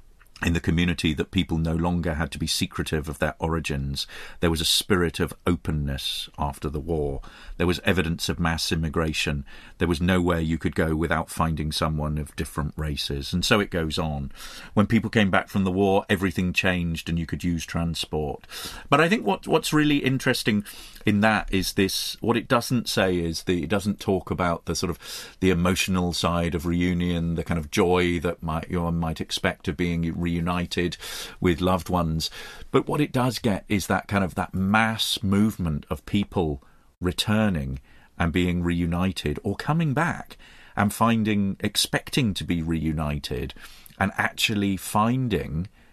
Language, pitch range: English, 80-100 Hz